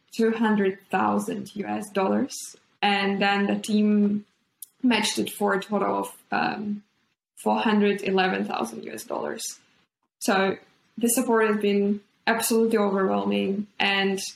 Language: English